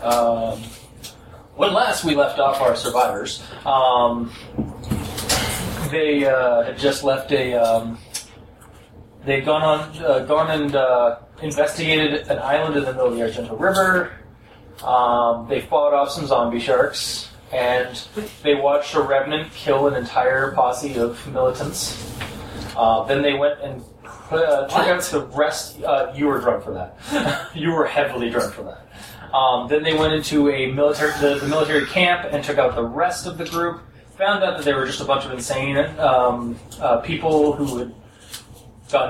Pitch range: 120-145 Hz